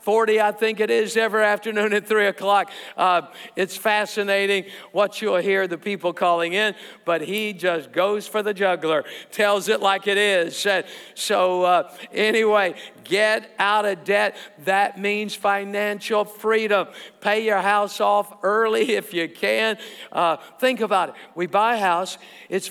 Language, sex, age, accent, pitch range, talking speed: English, male, 50-69, American, 195-220 Hz, 155 wpm